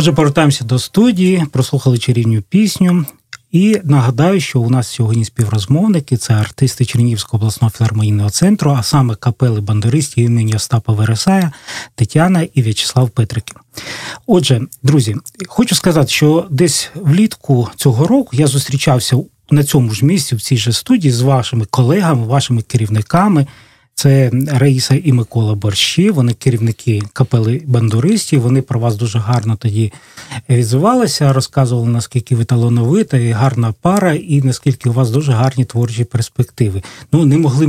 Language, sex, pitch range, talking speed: Russian, male, 120-150 Hz, 140 wpm